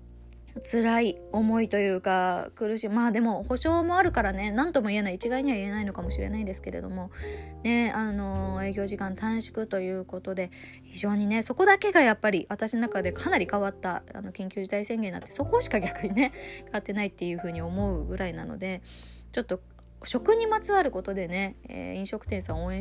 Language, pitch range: Japanese, 180-255 Hz